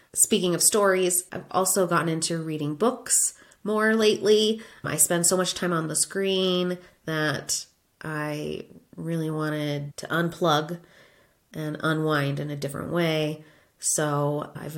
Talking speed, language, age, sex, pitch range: 135 wpm, English, 30-49, female, 150-180 Hz